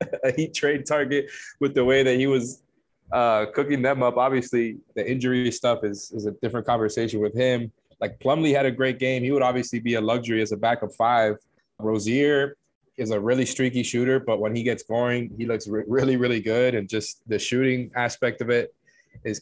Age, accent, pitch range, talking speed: 20-39, American, 110-130 Hz, 205 wpm